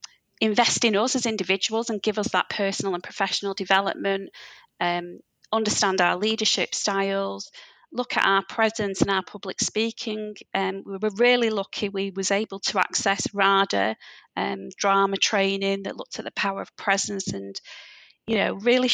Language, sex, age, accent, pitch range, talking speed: English, female, 30-49, British, 190-215 Hz, 160 wpm